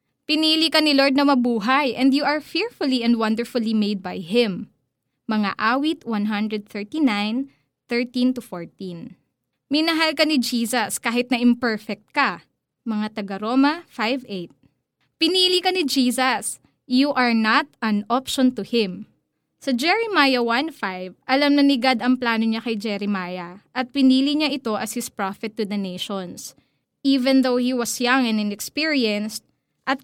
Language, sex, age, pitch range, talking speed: Filipino, female, 20-39, 210-275 Hz, 145 wpm